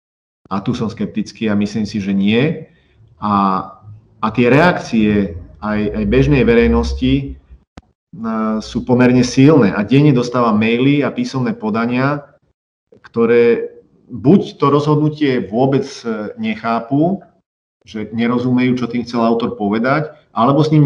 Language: Slovak